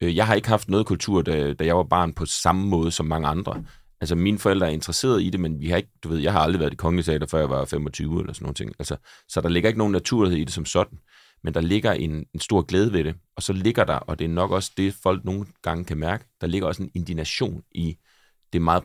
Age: 30-49